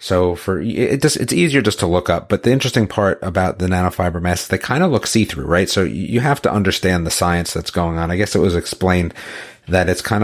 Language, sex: English, male